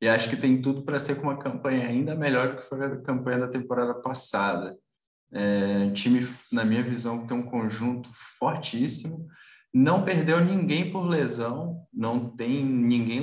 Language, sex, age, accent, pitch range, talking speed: Portuguese, male, 20-39, Brazilian, 110-125 Hz, 170 wpm